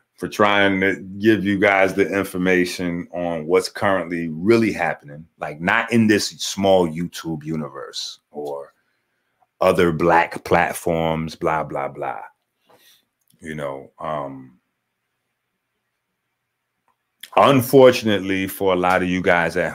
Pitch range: 85-105 Hz